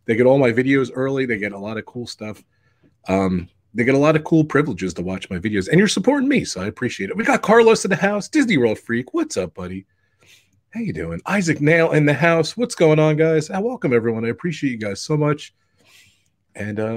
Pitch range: 120-180 Hz